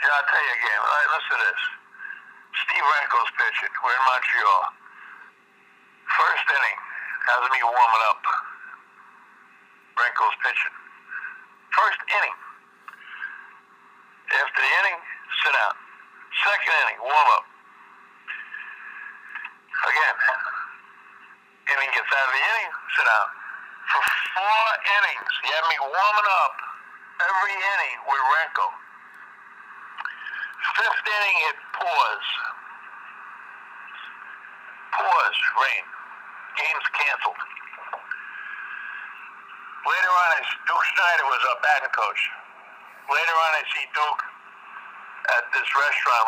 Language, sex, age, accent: English, male, 60-79, American